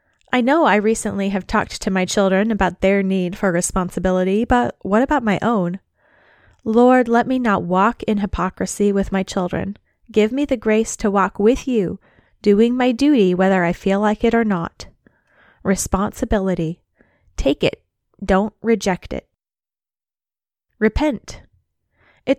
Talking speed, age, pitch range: 145 wpm, 20-39, 185-230 Hz